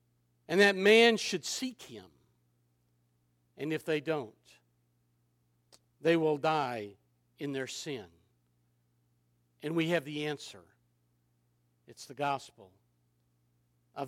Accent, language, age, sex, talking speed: American, English, 60-79, male, 105 wpm